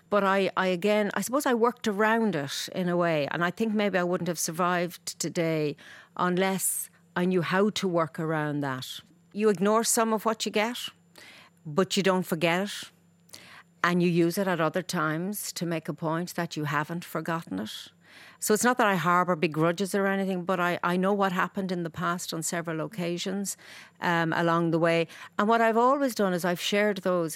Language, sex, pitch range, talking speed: English, female, 160-190 Hz, 205 wpm